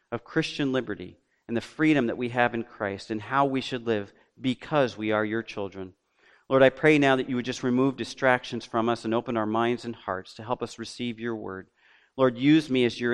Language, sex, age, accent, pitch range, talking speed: English, male, 40-59, American, 115-145 Hz, 230 wpm